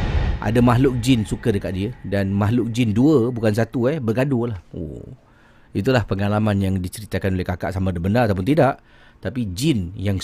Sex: male